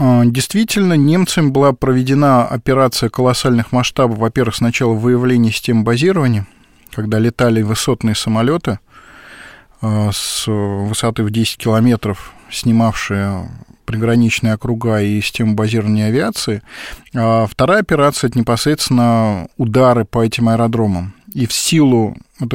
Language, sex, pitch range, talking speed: Russian, male, 110-130 Hz, 115 wpm